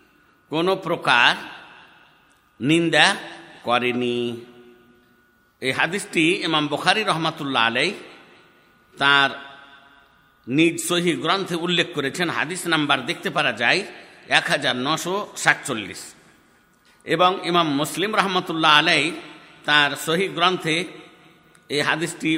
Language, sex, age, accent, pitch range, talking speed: Bengali, male, 60-79, native, 145-185 Hz, 85 wpm